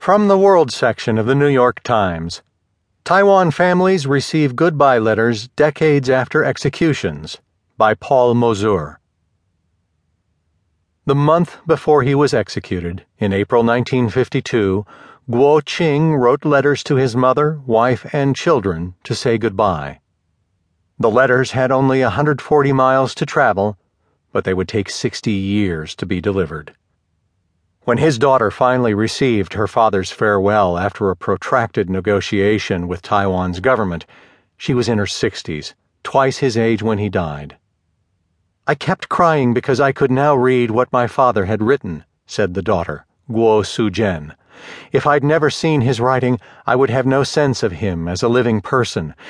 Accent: American